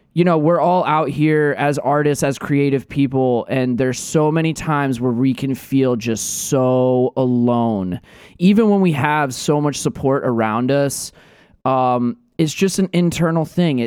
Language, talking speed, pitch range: English, 165 wpm, 125-155 Hz